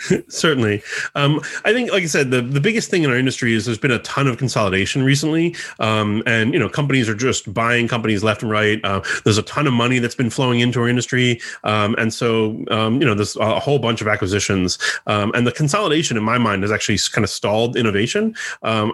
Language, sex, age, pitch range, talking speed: English, male, 30-49, 105-125 Hz, 230 wpm